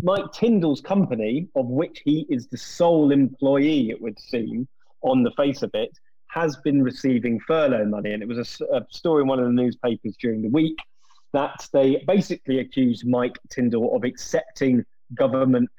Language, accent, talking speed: English, British, 175 wpm